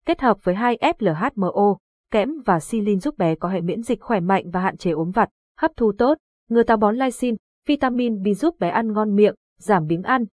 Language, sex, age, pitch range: Vietnamese, female, 20-39, 190-245 Hz